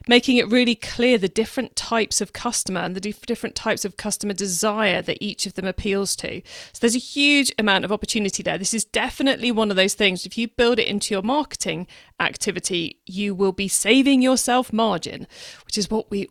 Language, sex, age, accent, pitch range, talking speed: English, female, 40-59, British, 185-240 Hz, 200 wpm